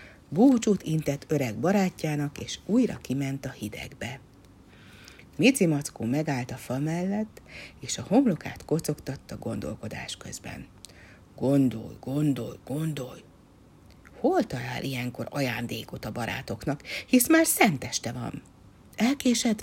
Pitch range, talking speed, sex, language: 120-185 Hz, 105 wpm, female, Hungarian